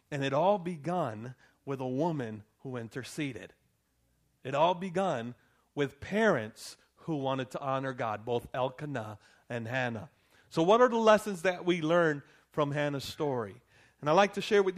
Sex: male